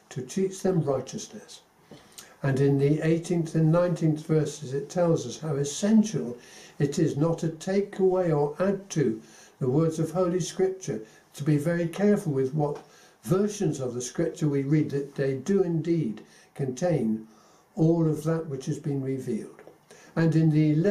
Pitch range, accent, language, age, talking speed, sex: 150-185 Hz, British, English, 60-79, 165 wpm, male